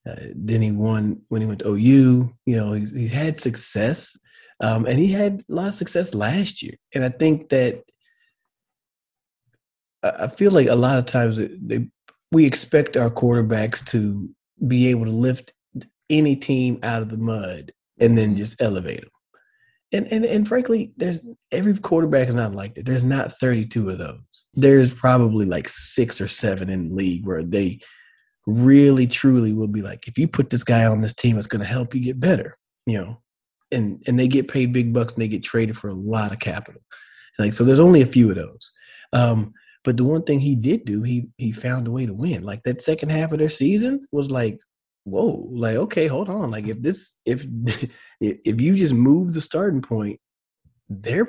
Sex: male